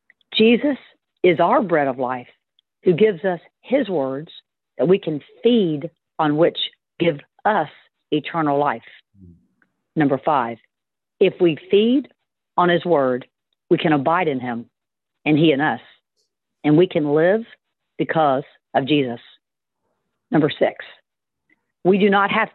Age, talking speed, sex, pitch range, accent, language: 50-69, 135 wpm, female, 145-195 Hz, American, English